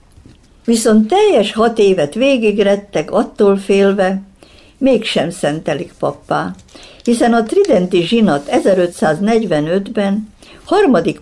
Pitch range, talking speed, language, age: 150-220 Hz, 85 wpm, Hungarian, 60-79